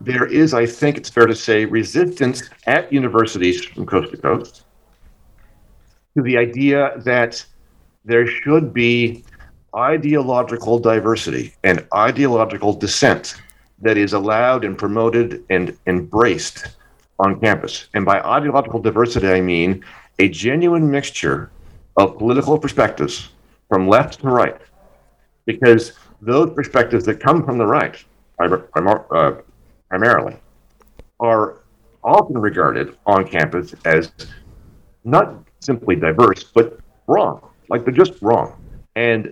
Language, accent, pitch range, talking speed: English, American, 100-130 Hz, 120 wpm